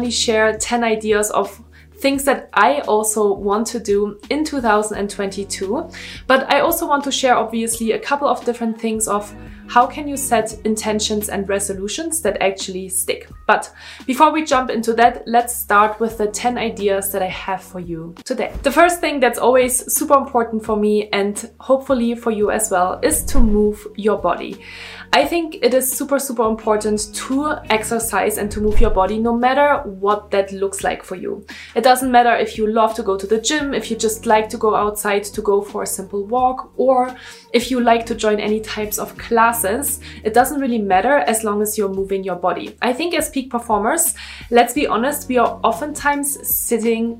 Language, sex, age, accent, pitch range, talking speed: English, female, 20-39, German, 210-255 Hz, 195 wpm